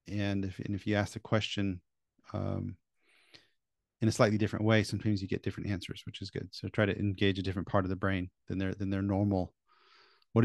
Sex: male